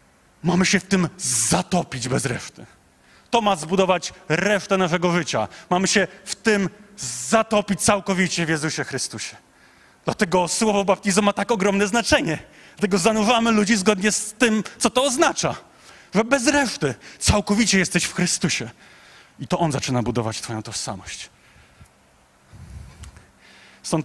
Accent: native